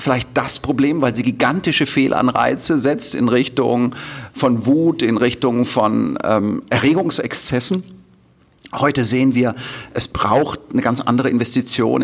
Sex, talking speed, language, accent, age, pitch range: male, 130 wpm, German, German, 40-59, 115-140 Hz